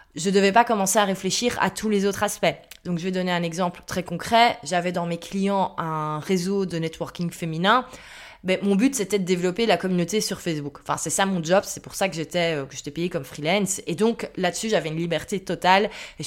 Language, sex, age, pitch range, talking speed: French, female, 20-39, 175-215 Hz, 220 wpm